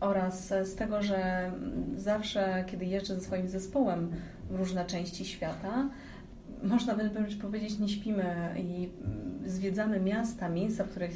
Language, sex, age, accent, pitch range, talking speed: Polish, female, 30-49, native, 175-205 Hz, 135 wpm